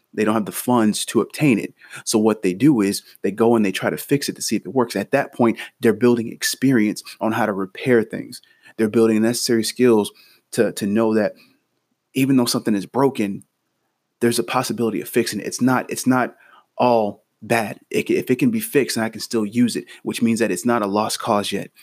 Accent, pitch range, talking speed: American, 105-125 Hz, 230 wpm